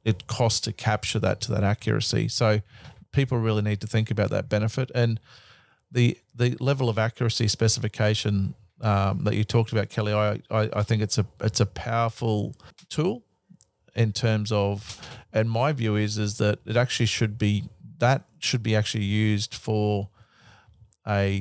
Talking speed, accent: 165 wpm, Australian